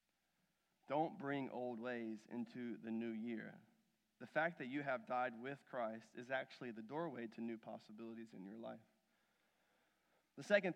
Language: English